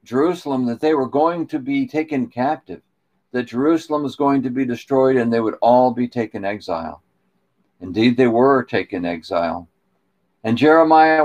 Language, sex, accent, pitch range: English, male, American, 125-170 Hz